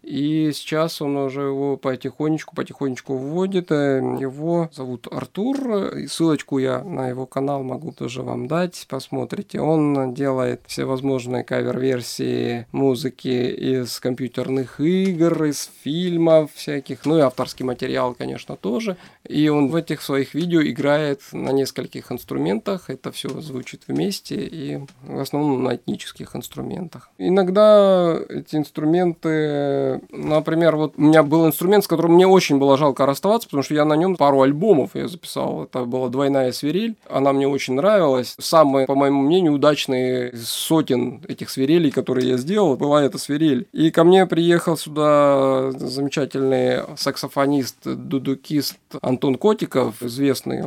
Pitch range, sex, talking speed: 130-160 Hz, male, 135 wpm